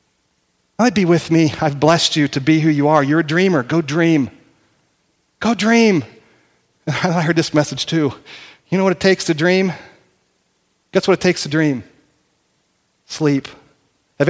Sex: male